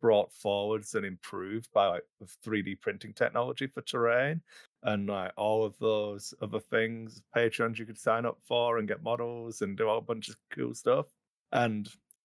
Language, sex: English, male